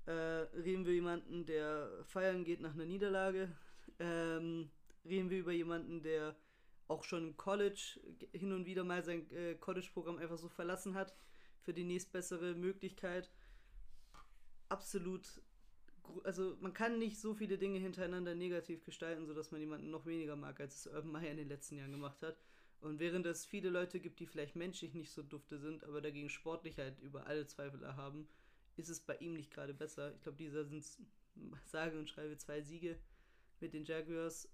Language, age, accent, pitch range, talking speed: German, 20-39, German, 155-180 Hz, 175 wpm